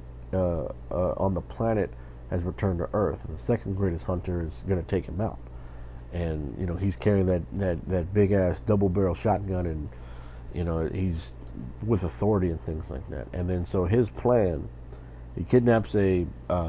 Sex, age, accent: male, 50-69, American